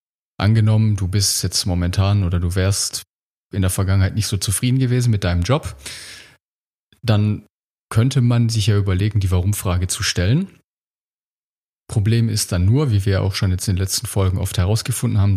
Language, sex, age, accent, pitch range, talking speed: German, male, 30-49, German, 95-110 Hz, 170 wpm